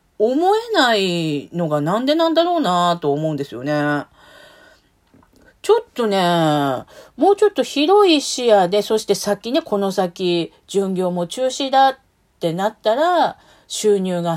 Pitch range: 165-260 Hz